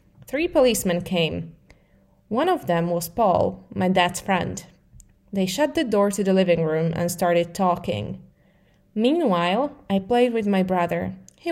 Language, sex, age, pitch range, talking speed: Slovak, female, 20-39, 175-230 Hz, 150 wpm